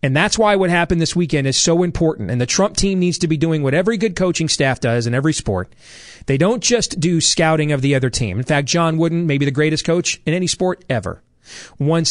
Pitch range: 115-175 Hz